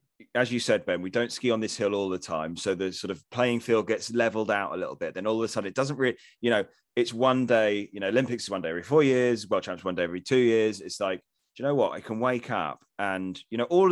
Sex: male